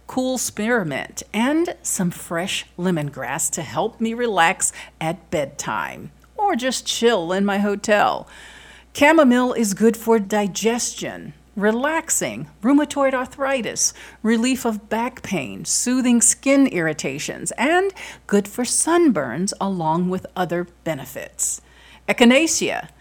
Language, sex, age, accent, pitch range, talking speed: English, female, 50-69, American, 185-250 Hz, 110 wpm